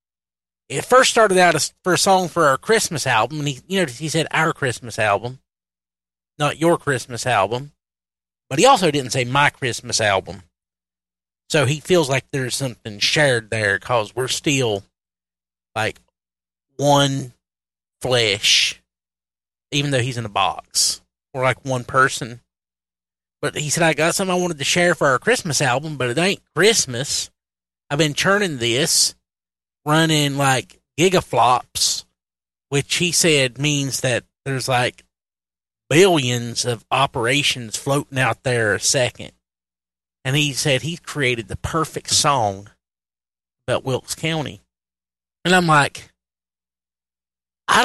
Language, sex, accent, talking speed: English, male, American, 140 wpm